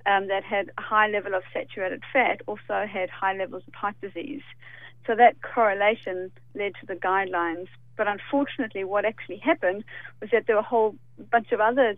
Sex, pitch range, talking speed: female, 185-225 Hz, 185 wpm